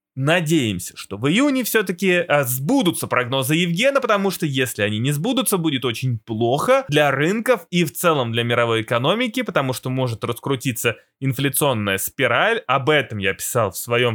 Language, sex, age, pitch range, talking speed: Russian, male, 20-39, 130-185 Hz, 155 wpm